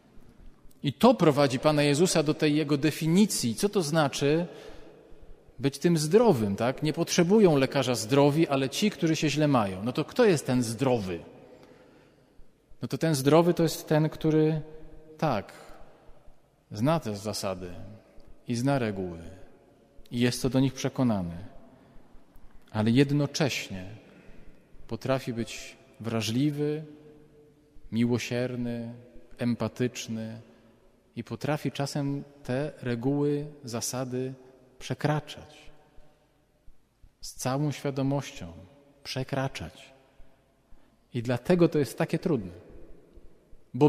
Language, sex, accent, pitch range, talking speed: Polish, male, native, 115-150 Hz, 105 wpm